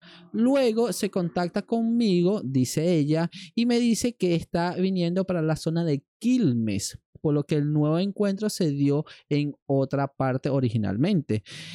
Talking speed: 150 wpm